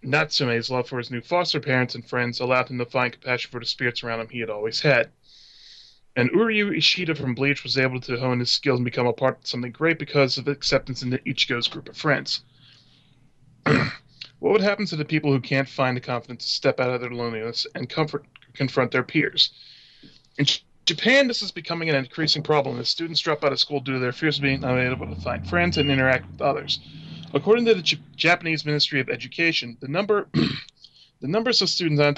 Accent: American